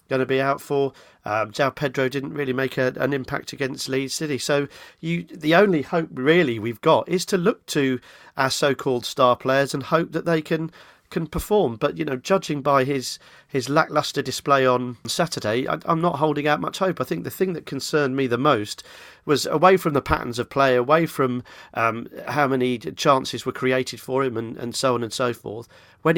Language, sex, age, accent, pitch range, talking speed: English, male, 40-59, British, 120-150 Hz, 210 wpm